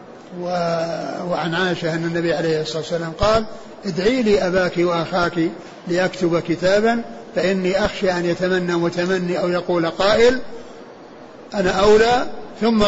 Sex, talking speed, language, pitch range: male, 110 wpm, Arabic, 180-220 Hz